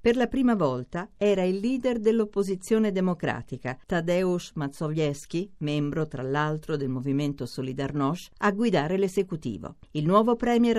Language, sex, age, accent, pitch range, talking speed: Italian, female, 50-69, native, 145-205 Hz, 130 wpm